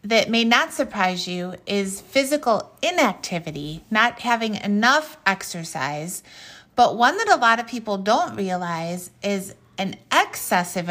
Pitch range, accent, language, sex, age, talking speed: 175-220 Hz, American, English, female, 30-49, 130 wpm